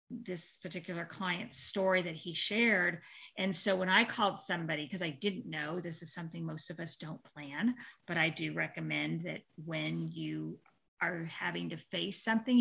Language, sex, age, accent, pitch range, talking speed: English, female, 40-59, American, 175-225 Hz, 175 wpm